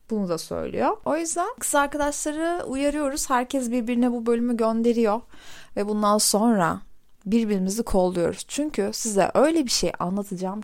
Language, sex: Turkish, female